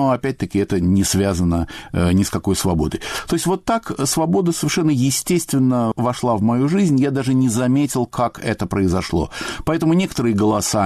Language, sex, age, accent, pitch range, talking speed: Russian, male, 50-69, native, 90-125 Hz, 165 wpm